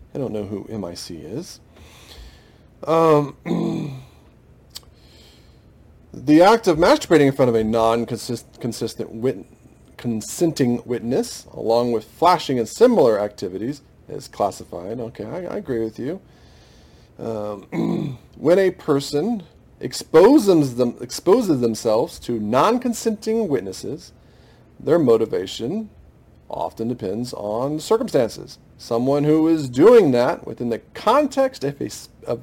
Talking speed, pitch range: 105 wpm, 115-170 Hz